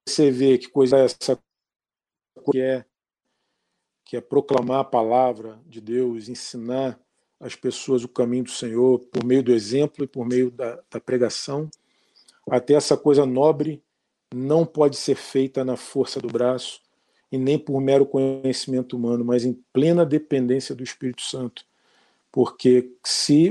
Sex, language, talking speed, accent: male, Portuguese, 150 wpm, Brazilian